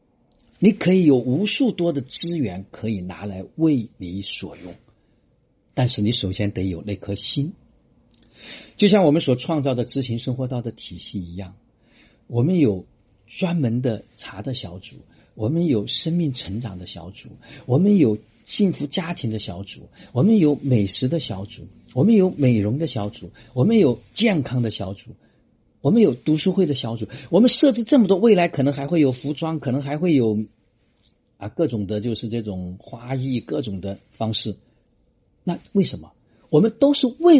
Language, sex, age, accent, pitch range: Chinese, male, 50-69, native, 105-155 Hz